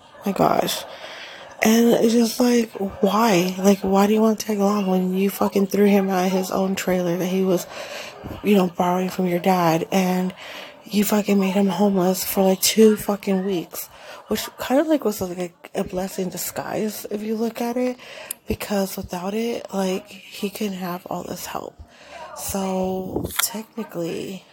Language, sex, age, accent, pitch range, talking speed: English, female, 20-39, American, 185-215 Hz, 175 wpm